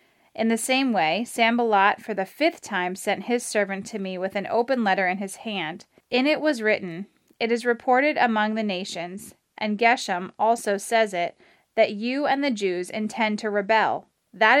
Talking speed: 185 wpm